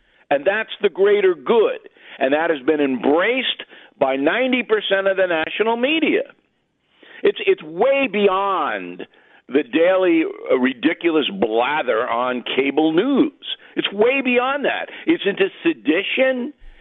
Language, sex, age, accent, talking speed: English, male, 50-69, American, 120 wpm